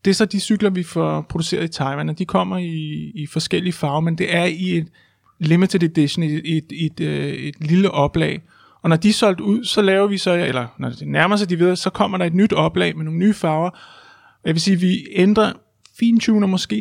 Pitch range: 160-195 Hz